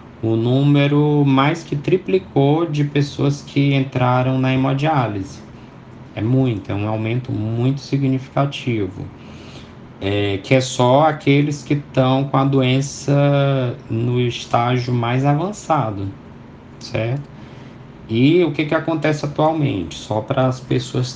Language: Portuguese